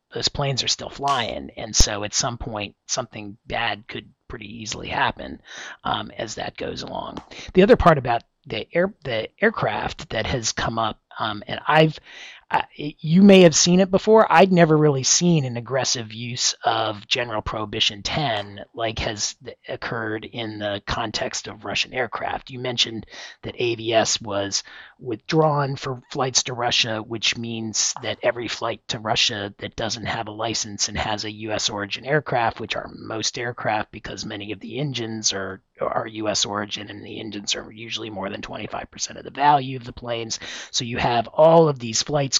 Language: English